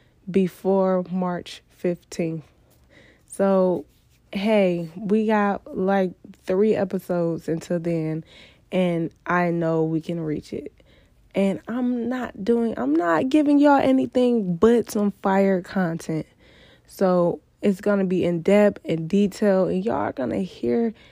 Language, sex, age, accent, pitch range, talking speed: English, female, 20-39, American, 175-215 Hz, 125 wpm